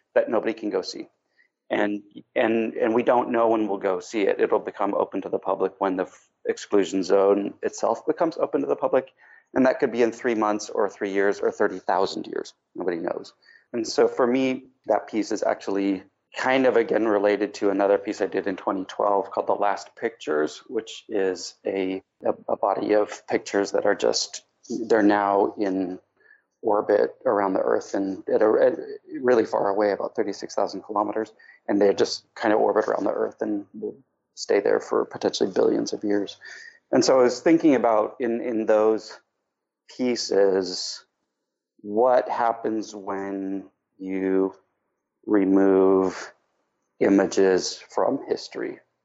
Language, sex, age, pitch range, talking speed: English, male, 30-49, 95-130 Hz, 170 wpm